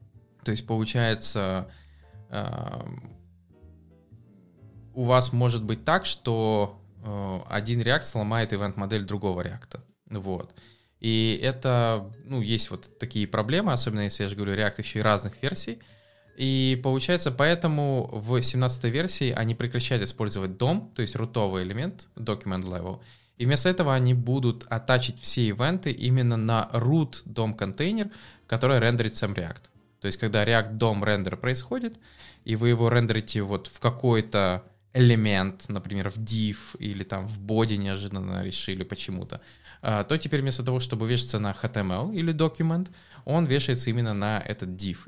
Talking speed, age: 140 wpm, 20-39